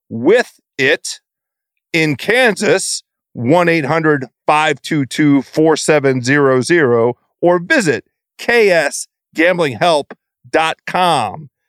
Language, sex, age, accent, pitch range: English, male, 40-59, American, 150-200 Hz